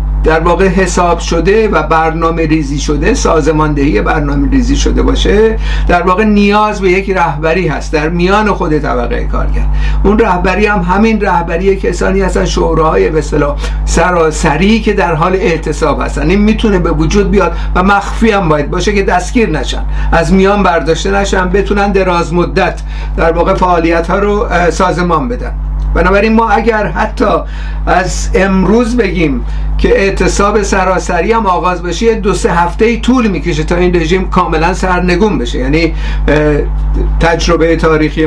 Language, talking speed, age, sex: Persian, 145 wpm, 60-79, male